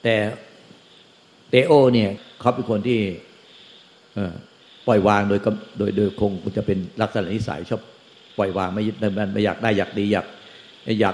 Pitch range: 100-115 Hz